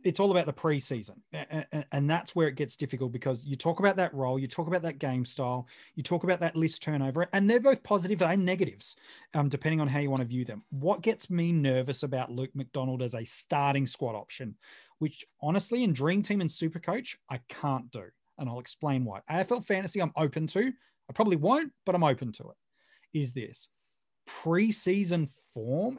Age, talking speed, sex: 30-49, 205 wpm, male